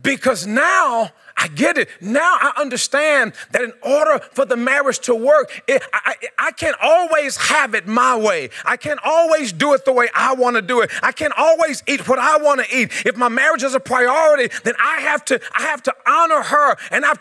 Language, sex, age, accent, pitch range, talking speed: English, male, 30-49, American, 255-300 Hz, 225 wpm